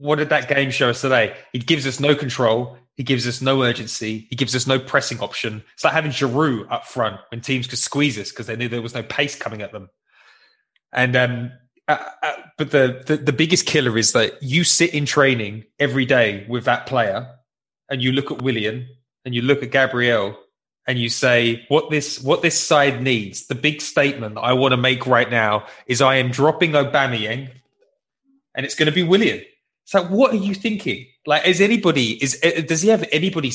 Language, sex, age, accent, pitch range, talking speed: English, male, 20-39, British, 125-150 Hz, 210 wpm